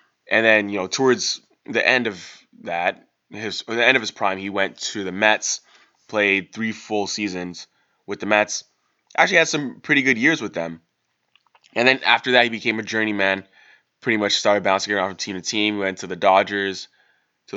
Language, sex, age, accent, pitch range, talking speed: English, male, 20-39, American, 95-110 Hz, 200 wpm